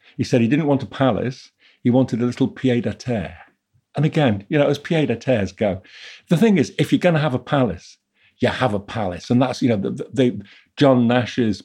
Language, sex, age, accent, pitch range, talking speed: English, male, 50-69, British, 105-130 Hz, 235 wpm